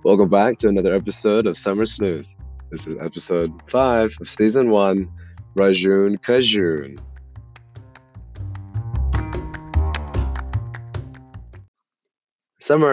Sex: male